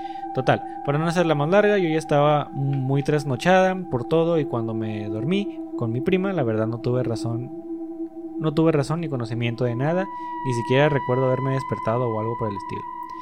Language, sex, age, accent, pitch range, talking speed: Spanish, male, 20-39, Mexican, 115-170 Hz, 195 wpm